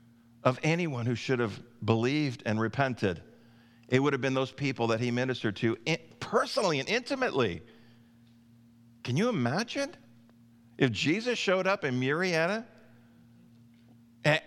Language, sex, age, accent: English, male, 50-69, American